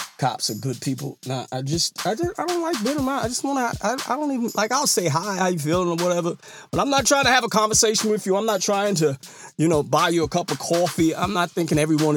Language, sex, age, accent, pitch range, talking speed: English, male, 30-49, American, 130-210 Hz, 275 wpm